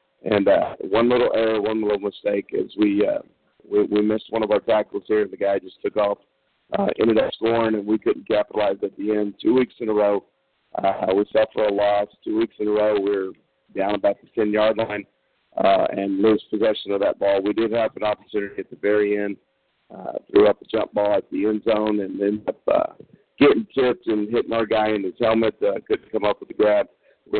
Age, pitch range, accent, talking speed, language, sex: 50-69, 105-120 Hz, American, 230 wpm, English, male